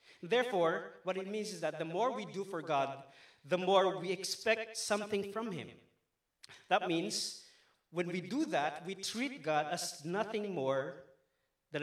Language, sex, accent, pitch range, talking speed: English, male, Filipino, 145-195 Hz, 160 wpm